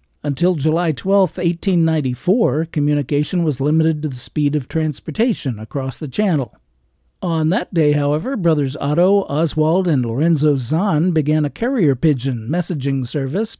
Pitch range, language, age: 135-180 Hz, English, 50-69